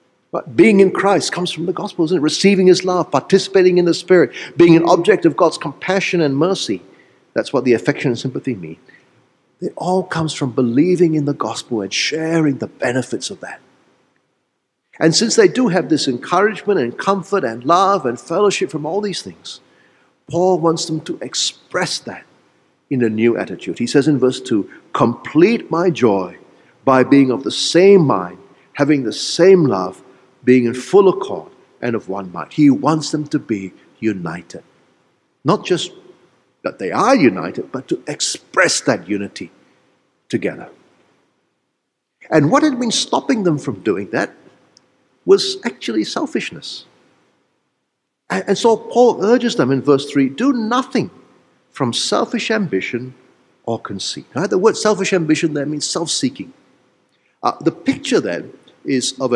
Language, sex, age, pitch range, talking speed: English, male, 50-69, 145-210 Hz, 160 wpm